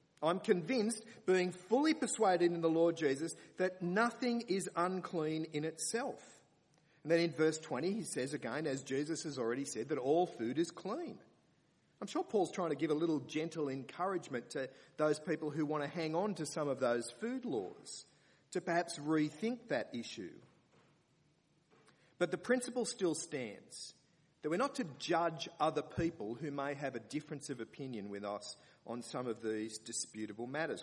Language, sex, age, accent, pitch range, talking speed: English, male, 40-59, Australian, 135-185 Hz, 170 wpm